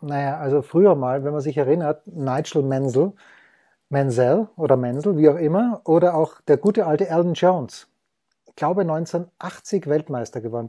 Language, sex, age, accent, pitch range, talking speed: German, male, 30-49, German, 145-185 Hz, 155 wpm